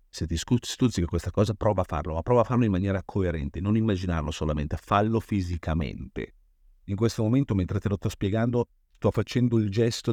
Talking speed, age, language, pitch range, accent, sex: 195 wpm, 50-69, Italian, 85-110 Hz, native, male